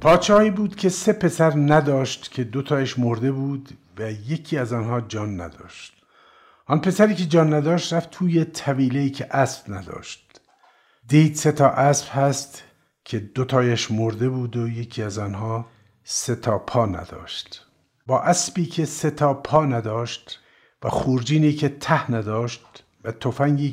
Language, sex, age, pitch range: Persian, male, 50-69, 105-135 Hz